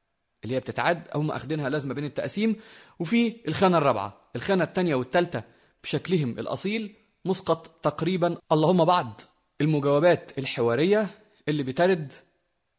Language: Arabic